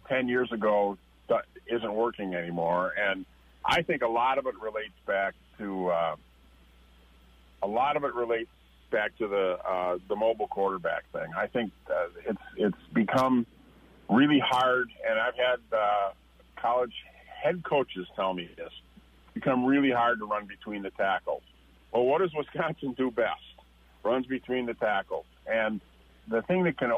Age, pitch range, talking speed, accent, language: 50-69, 85-130 Hz, 160 wpm, American, English